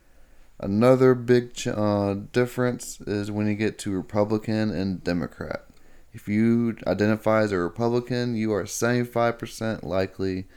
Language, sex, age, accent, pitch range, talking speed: English, male, 20-39, American, 95-115 Hz, 125 wpm